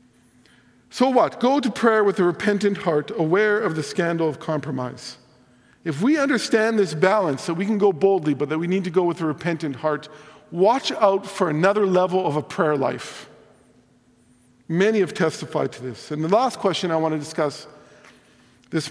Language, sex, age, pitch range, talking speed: English, male, 50-69, 150-210 Hz, 185 wpm